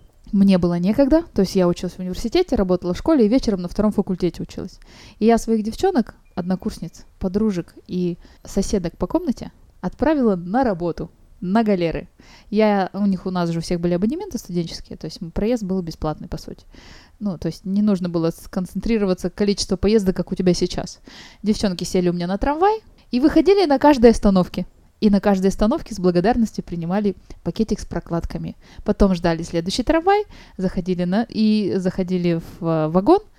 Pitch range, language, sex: 180-230 Hz, Russian, female